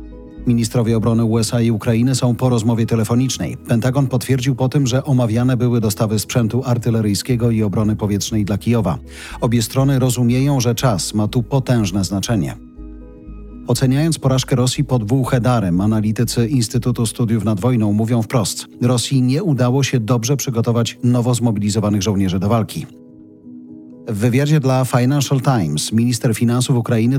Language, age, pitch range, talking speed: Polish, 40-59, 110-130 Hz, 145 wpm